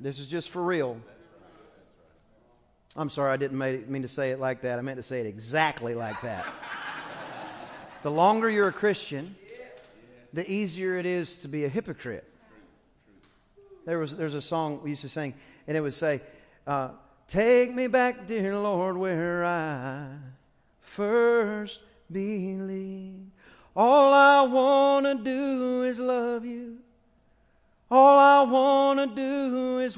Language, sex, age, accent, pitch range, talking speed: English, male, 40-59, American, 170-250 Hz, 150 wpm